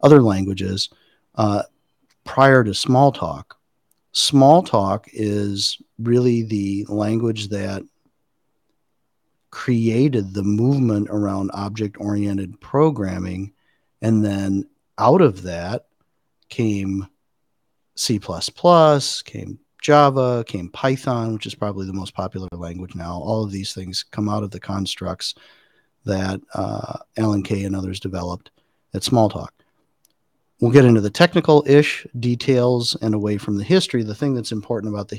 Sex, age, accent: male, 40-59, American